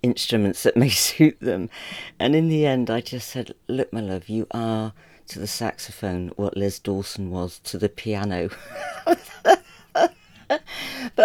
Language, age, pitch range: English, 40-59, 95-125 Hz